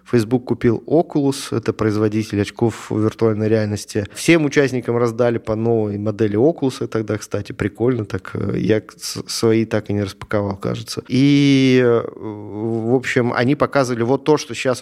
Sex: male